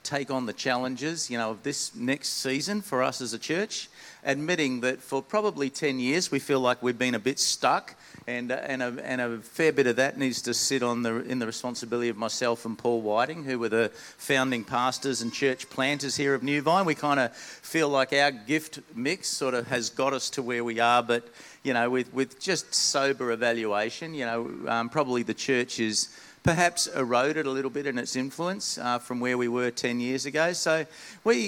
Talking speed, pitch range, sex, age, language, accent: 215 wpm, 115-135 Hz, male, 50-69, English, Australian